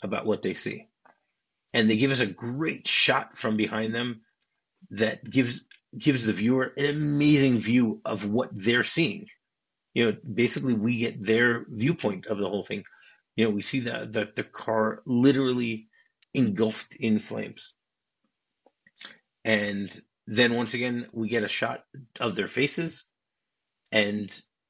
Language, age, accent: English, 30-49, American